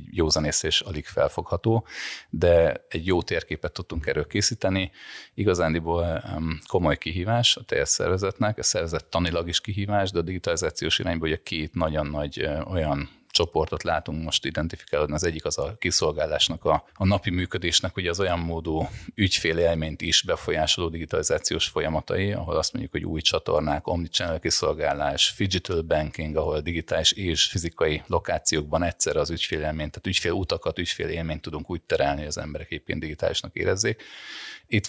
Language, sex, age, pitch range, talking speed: Hungarian, male, 30-49, 80-95 Hz, 145 wpm